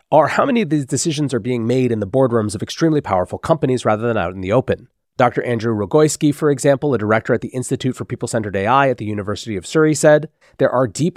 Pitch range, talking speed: 115-155 Hz, 235 wpm